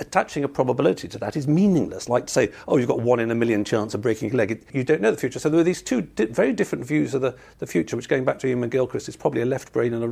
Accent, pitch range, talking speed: British, 115-145 Hz, 310 wpm